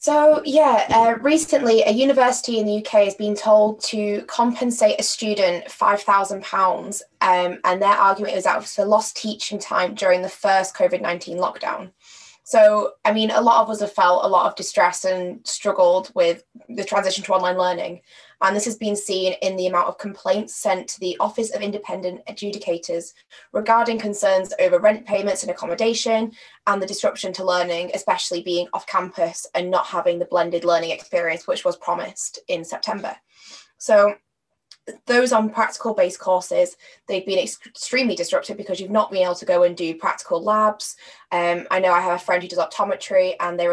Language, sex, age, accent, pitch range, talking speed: English, female, 10-29, British, 180-235 Hz, 180 wpm